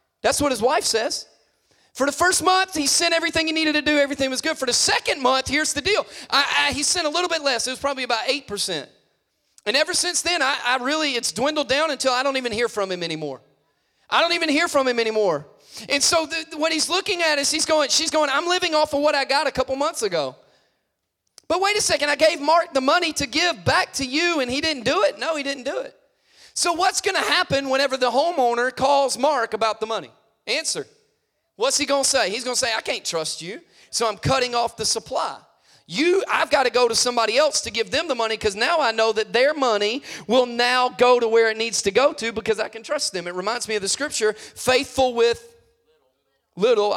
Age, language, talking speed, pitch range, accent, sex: 30-49, English, 235 wpm, 230-320 Hz, American, male